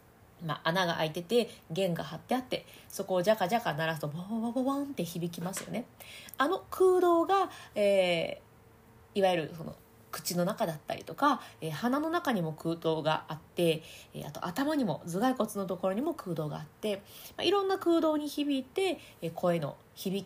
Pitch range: 170-250 Hz